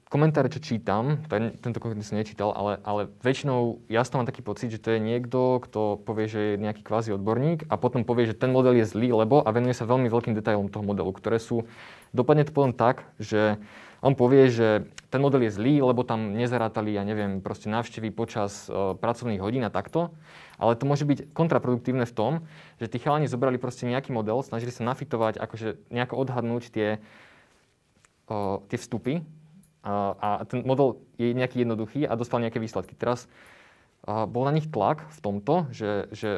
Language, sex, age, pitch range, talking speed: Slovak, male, 20-39, 110-130 Hz, 190 wpm